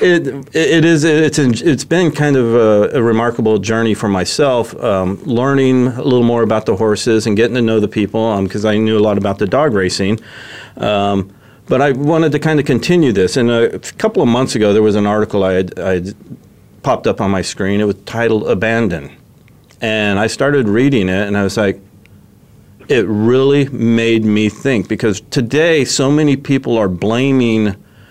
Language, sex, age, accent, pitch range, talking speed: English, male, 40-59, American, 105-140 Hz, 195 wpm